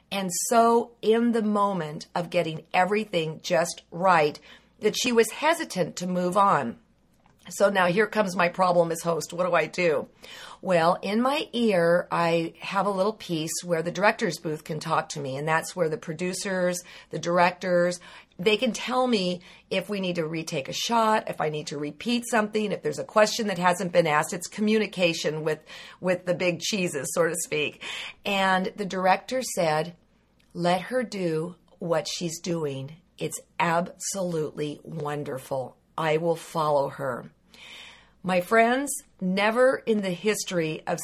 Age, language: 50-69, English